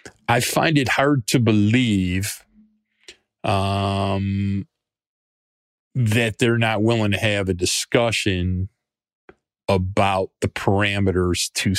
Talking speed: 95 wpm